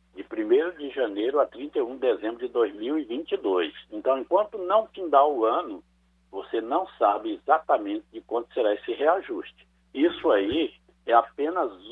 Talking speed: 150 wpm